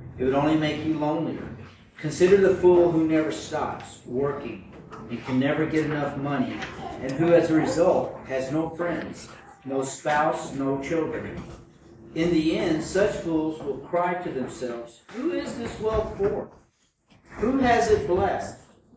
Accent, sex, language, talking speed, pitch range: American, male, English, 155 wpm, 135-185 Hz